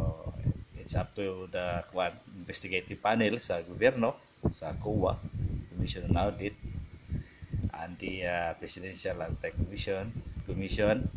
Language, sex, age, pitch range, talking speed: English, male, 20-39, 90-105 Hz, 95 wpm